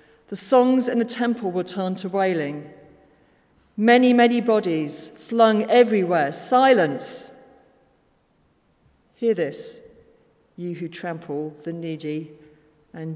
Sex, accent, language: female, British, English